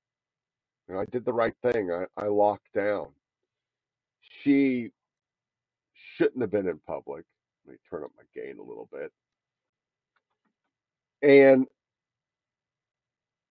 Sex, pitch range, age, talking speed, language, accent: male, 110-165 Hz, 50-69, 110 wpm, English, American